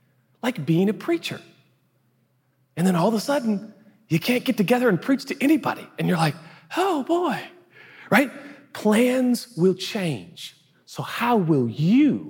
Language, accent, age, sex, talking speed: English, American, 40-59, male, 150 wpm